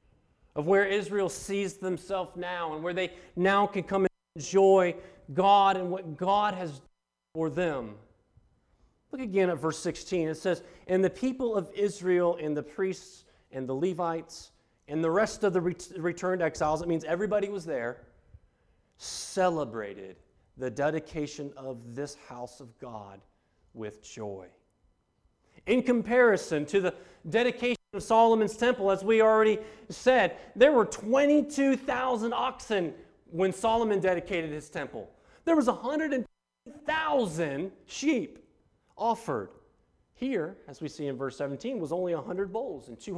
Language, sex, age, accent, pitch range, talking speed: English, male, 40-59, American, 155-215 Hz, 145 wpm